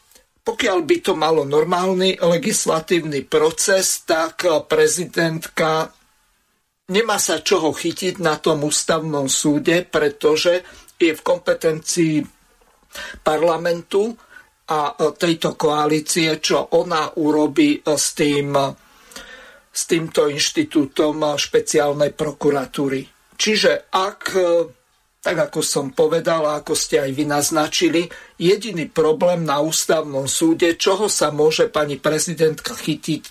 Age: 50-69